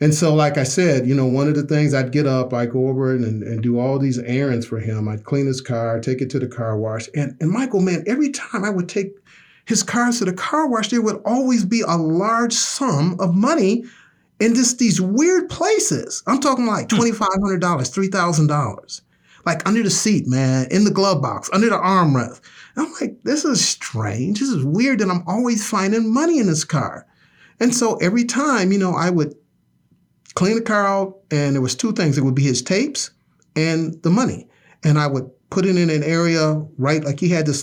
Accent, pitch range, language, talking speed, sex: American, 125-195 Hz, English, 215 wpm, male